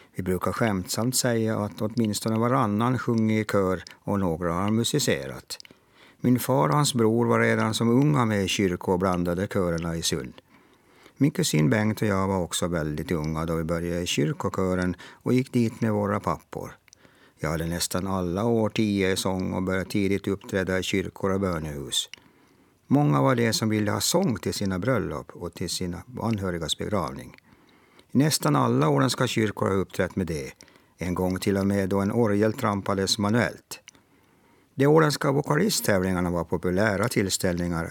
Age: 50-69